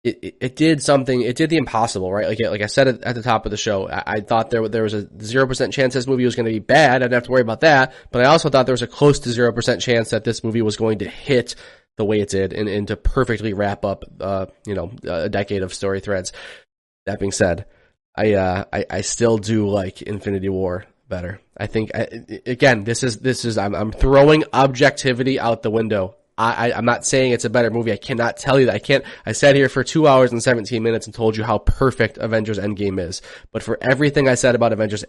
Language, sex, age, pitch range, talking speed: English, male, 20-39, 105-130 Hz, 250 wpm